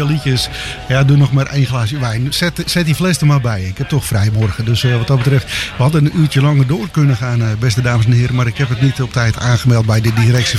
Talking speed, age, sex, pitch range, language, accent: 270 wpm, 50-69, male, 120-150 Hz, English, Dutch